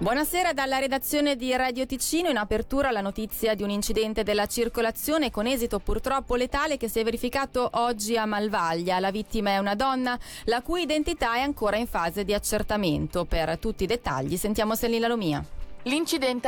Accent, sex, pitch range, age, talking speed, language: native, female, 190-250 Hz, 20-39, 175 wpm, Italian